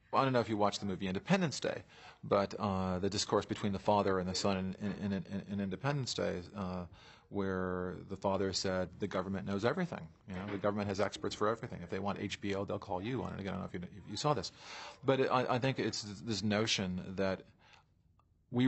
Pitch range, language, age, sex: 95-110 Hz, English, 40-59, male